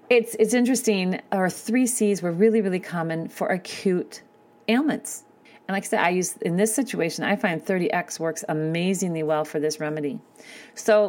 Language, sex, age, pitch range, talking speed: English, female, 40-59, 175-225 Hz, 175 wpm